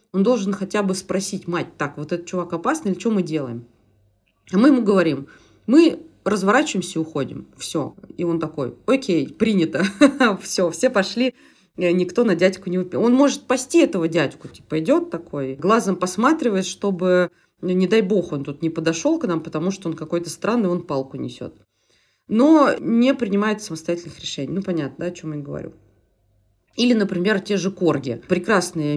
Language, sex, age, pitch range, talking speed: Russian, female, 20-39, 160-220 Hz, 170 wpm